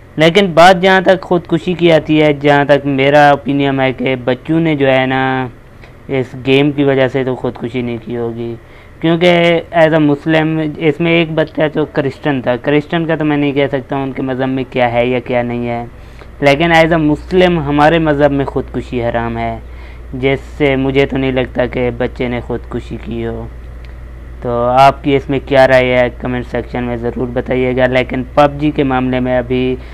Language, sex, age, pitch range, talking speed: Urdu, female, 20-39, 120-145 Hz, 200 wpm